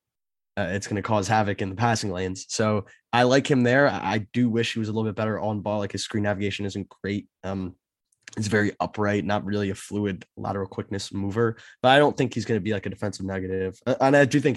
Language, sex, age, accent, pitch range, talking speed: English, male, 20-39, American, 100-115 Hz, 250 wpm